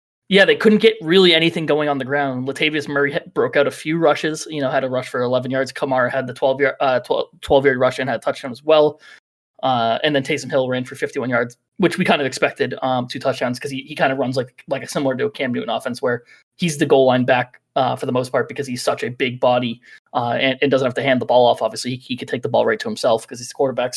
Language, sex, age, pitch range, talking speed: English, male, 20-39, 125-150 Hz, 285 wpm